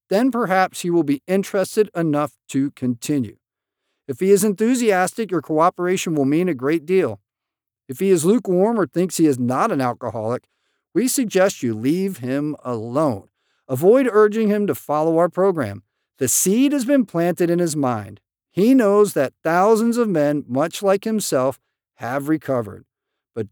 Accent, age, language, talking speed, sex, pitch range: American, 50-69, English, 165 wpm, male, 140-205 Hz